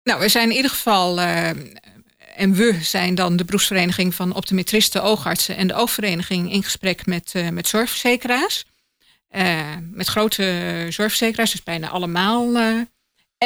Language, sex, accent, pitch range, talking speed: Dutch, female, Dutch, 175-215 Hz, 145 wpm